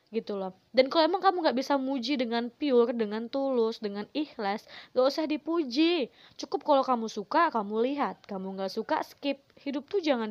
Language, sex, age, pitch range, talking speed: Indonesian, female, 20-39, 200-260 Hz, 180 wpm